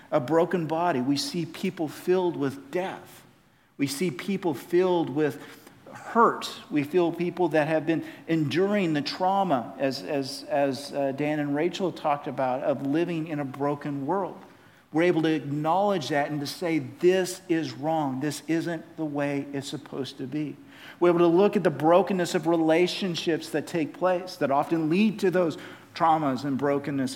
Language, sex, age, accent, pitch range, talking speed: English, male, 50-69, American, 145-175 Hz, 170 wpm